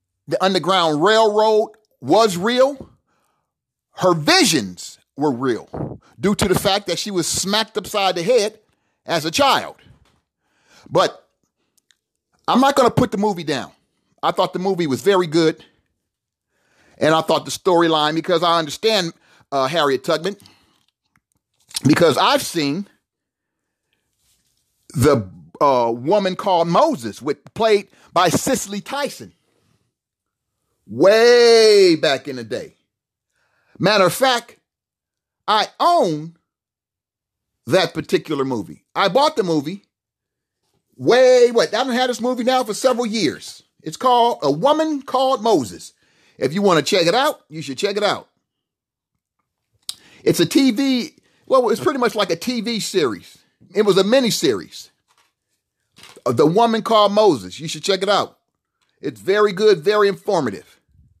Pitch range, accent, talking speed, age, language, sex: 165-250 Hz, American, 135 wpm, 40-59, English, male